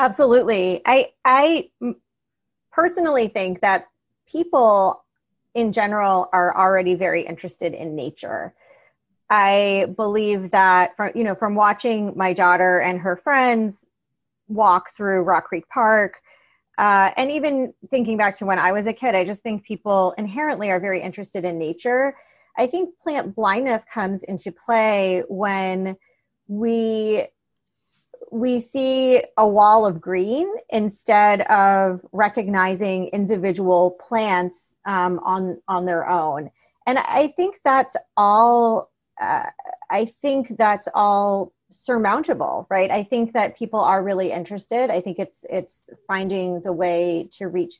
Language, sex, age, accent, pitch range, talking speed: English, female, 30-49, American, 185-240 Hz, 135 wpm